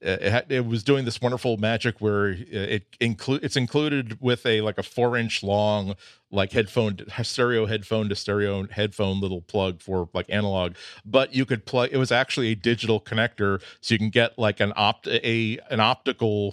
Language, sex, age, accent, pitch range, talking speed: English, male, 40-59, American, 95-115 Hz, 180 wpm